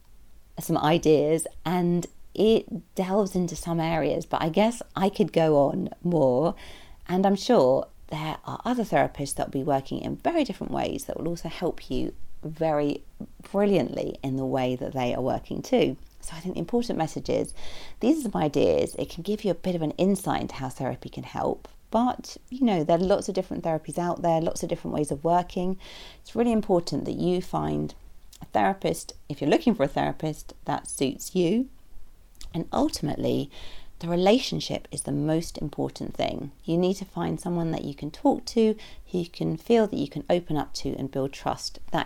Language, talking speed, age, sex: English, 195 wpm, 40-59, female